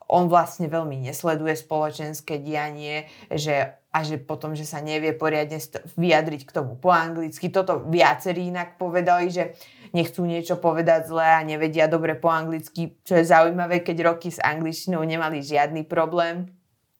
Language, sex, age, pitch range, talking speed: Slovak, female, 20-39, 155-185 Hz, 155 wpm